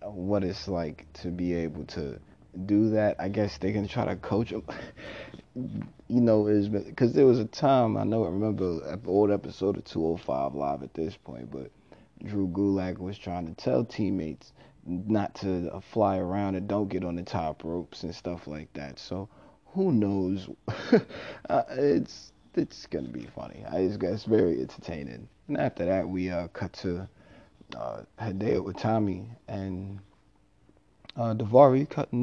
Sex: male